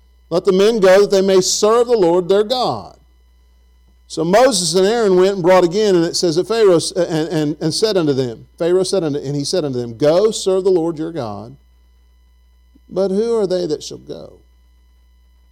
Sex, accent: male, American